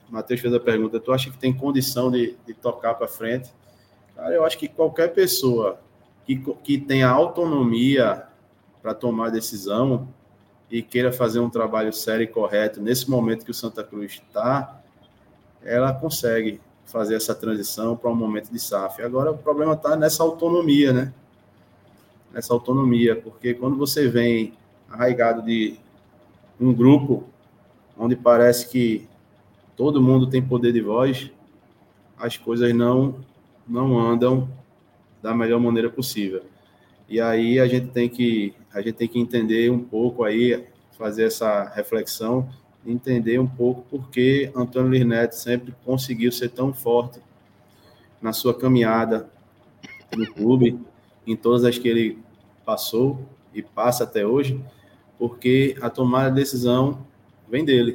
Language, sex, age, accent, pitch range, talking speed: Portuguese, male, 20-39, Brazilian, 115-130 Hz, 140 wpm